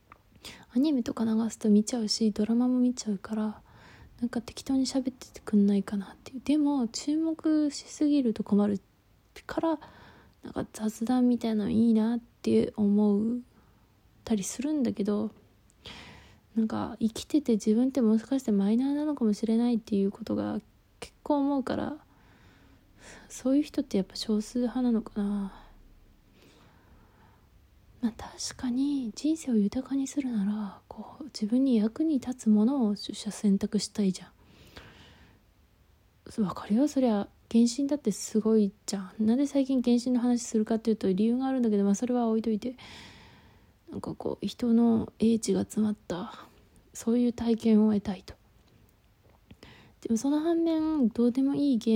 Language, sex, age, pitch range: Japanese, female, 20-39, 200-250 Hz